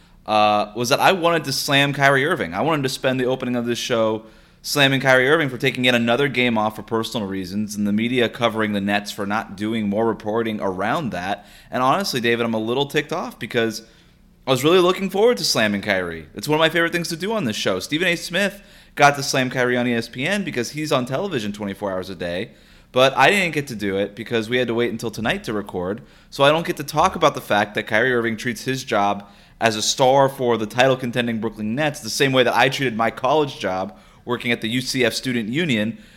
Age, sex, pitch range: 20-39, male, 115-140 Hz